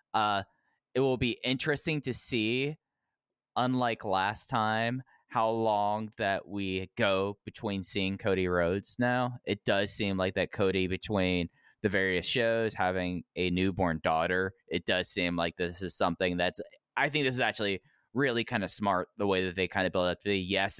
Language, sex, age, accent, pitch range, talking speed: English, male, 10-29, American, 95-120 Hz, 175 wpm